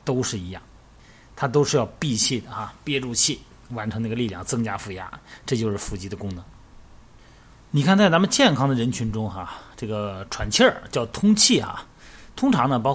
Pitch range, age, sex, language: 110-145 Hz, 30-49, male, Chinese